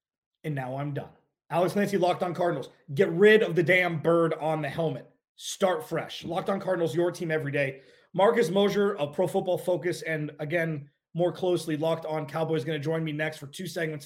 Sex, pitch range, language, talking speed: male, 155-180 Hz, English, 205 wpm